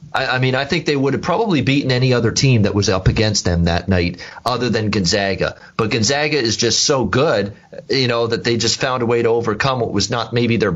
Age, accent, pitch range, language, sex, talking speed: 30-49, American, 100-125 Hz, English, male, 240 wpm